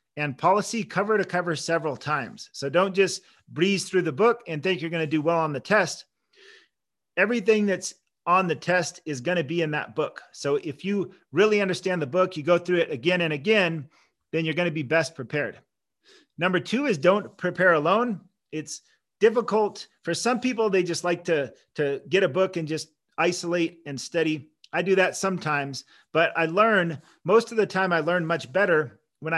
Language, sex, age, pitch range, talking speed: English, male, 40-59, 155-190 Hz, 190 wpm